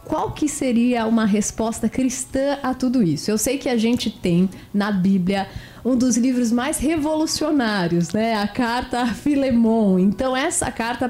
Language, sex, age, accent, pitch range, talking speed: Portuguese, female, 30-49, Brazilian, 205-255 Hz, 160 wpm